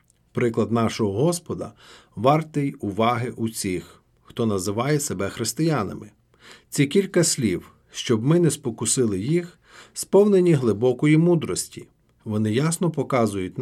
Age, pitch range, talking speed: 40-59, 110-150 Hz, 110 wpm